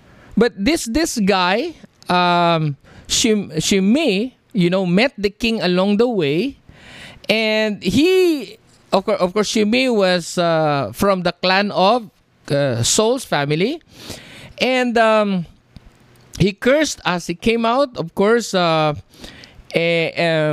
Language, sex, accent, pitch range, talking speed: English, male, Filipino, 170-230 Hz, 115 wpm